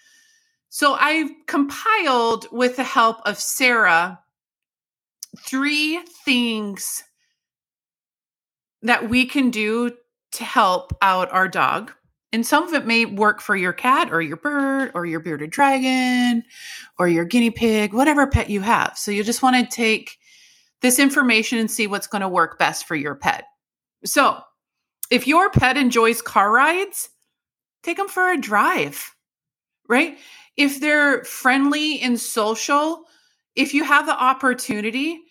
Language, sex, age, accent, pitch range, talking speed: English, female, 30-49, American, 210-285 Hz, 145 wpm